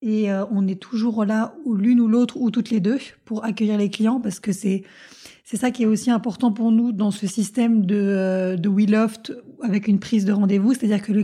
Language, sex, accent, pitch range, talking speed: French, female, French, 200-230 Hz, 240 wpm